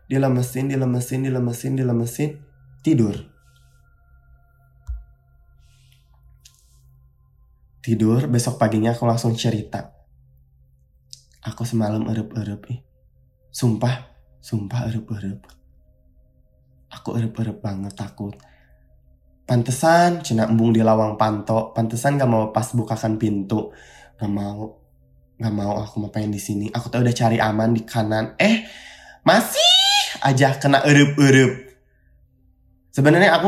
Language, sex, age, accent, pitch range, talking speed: Indonesian, male, 20-39, native, 105-130 Hz, 105 wpm